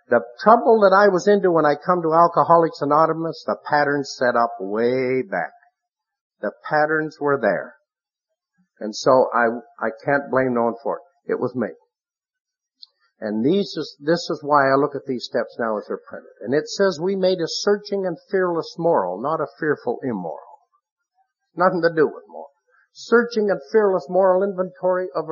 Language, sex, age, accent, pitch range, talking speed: English, male, 50-69, American, 135-205 Hz, 180 wpm